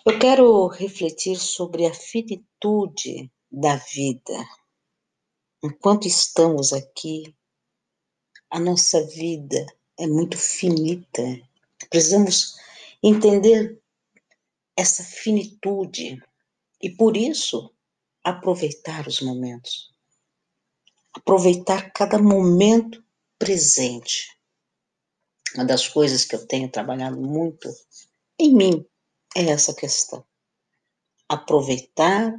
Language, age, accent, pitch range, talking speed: Portuguese, 50-69, Brazilian, 150-210 Hz, 85 wpm